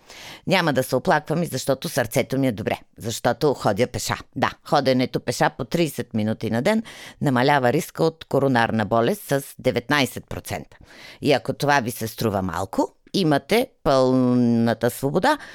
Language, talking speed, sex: Bulgarian, 145 wpm, female